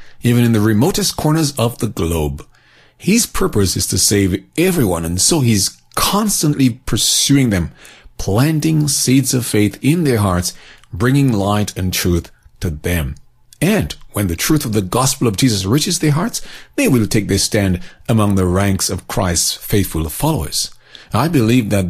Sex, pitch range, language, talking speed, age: male, 100-135 Hz, English, 165 wpm, 40-59